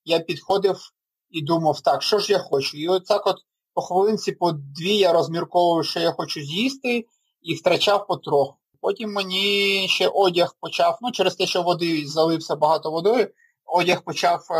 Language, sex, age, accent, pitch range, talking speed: Ukrainian, male, 30-49, native, 160-185 Hz, 170 wpm